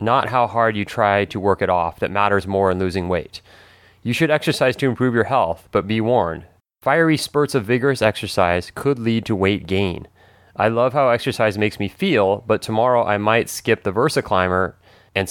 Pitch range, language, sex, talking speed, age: 95-115 Hz, English, male, 195 wpm, 30-49